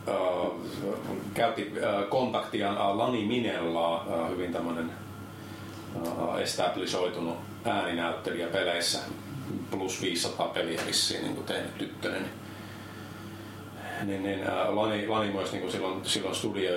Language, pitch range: Finnish, 85-105 Hz